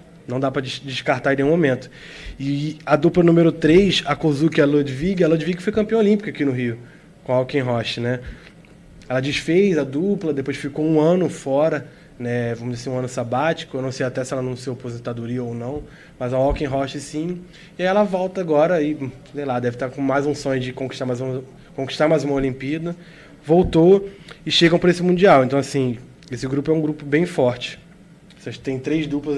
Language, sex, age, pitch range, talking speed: Portuguese, male, 20-39, 130-160 Hz, 205 wpm